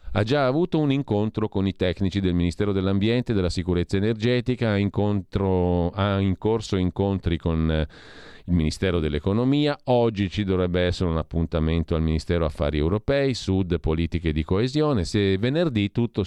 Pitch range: 85-115 Hz